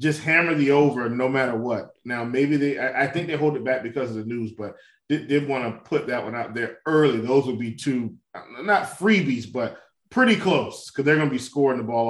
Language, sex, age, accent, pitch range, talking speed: English, male, 20-39, American, 125-160 Hz, 245 wpm